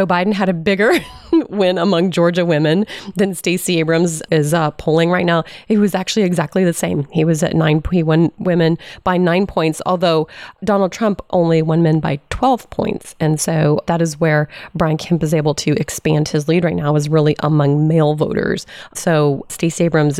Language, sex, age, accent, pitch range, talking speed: English, female, 30-49, American, 155-175 Hz, 190 wpm